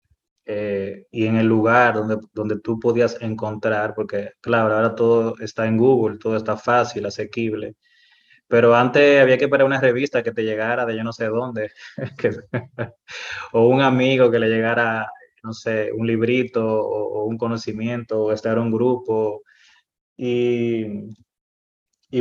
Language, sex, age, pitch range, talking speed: Spanish, male, 20-39, 110-120 Hz, 155 wpm